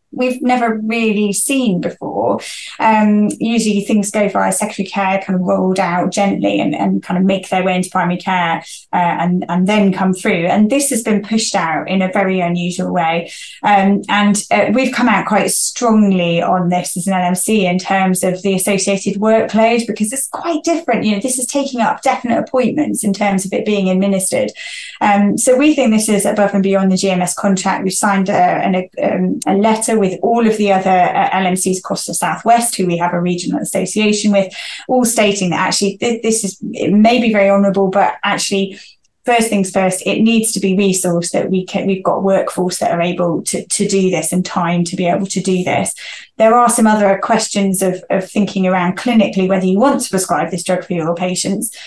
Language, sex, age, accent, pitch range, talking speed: English, female, 20-39, British, 185-215 Hz, 205 wpm